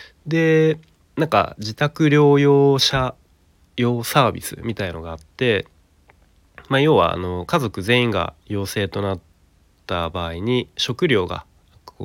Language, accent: Japanese, native